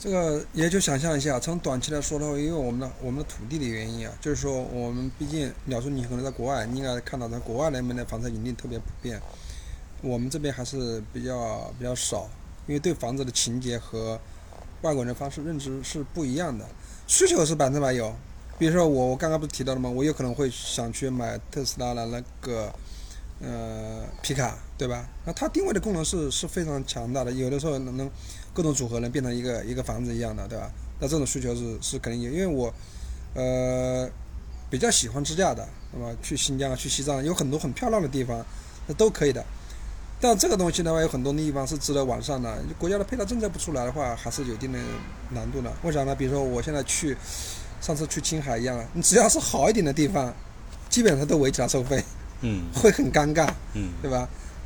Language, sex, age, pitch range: Chinese, male, 20-39, 120-150 Hz